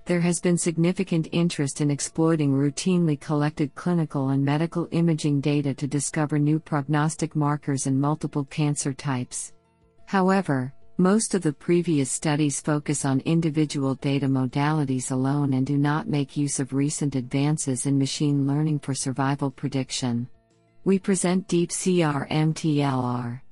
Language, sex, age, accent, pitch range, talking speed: English, female, 50-69, American, 135-155 Hz, 135 wpm